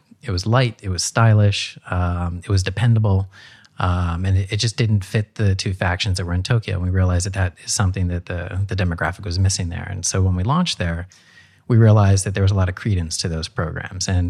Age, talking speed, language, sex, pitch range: 30-49, 240 wpm, English, male, 90-105 Hz